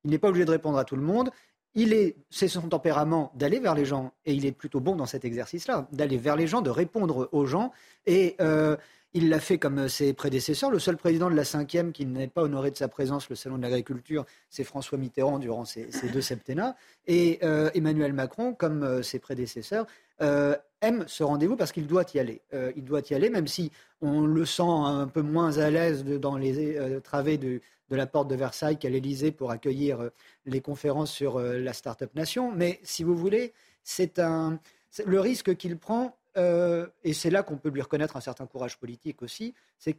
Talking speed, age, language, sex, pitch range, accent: 215 wpm, 40-59, French, male, 135-175 Hz, French